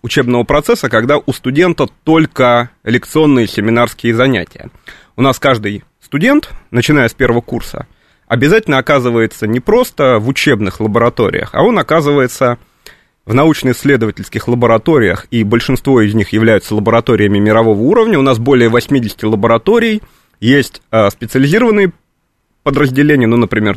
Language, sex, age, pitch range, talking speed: Russian, male, 30-49, 110-140 Hz, 120 wpm